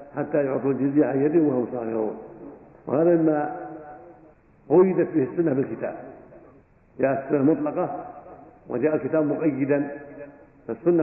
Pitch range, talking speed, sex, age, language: 140-165 Hz, 110 wpm, male, 70-89, Arabic